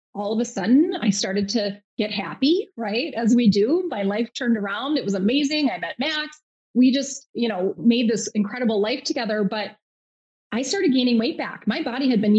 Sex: female